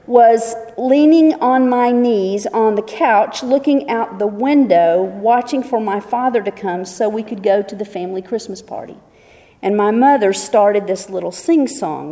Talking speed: 170 wpm